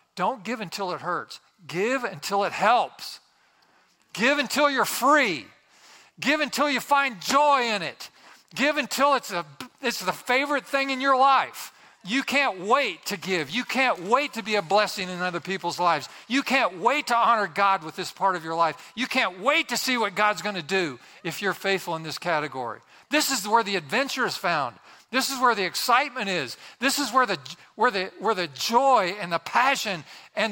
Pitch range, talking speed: 180-255 Hz, 200 wpm